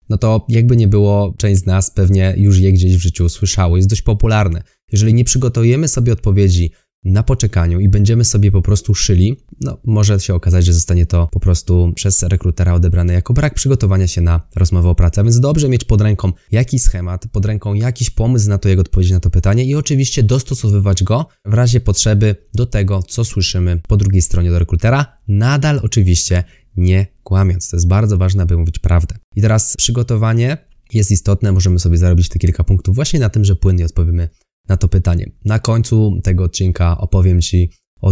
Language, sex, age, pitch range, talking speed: Polish, male, 20-39, 90-110 Hz, 195 wpm